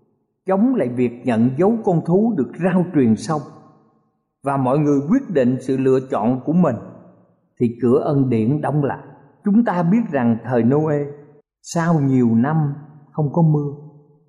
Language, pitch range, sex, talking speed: Vietnamese, 130-175 Hz, male, 165 wpm